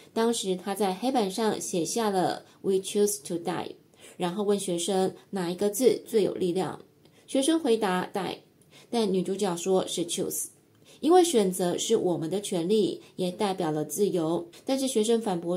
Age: 20-39